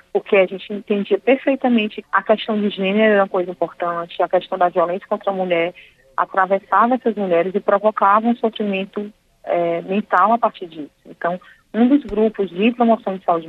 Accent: Brazilian